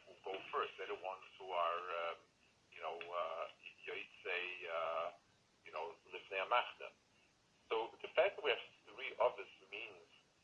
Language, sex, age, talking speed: English, male, 50-69, 110 wpm